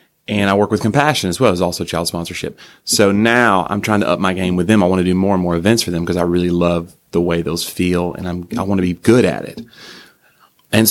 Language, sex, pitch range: English, male, 90-105 Hz